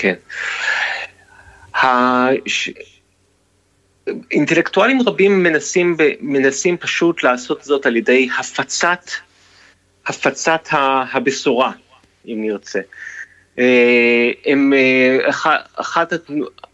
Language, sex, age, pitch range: Hebrew, male, 30-49, 130-180 Hz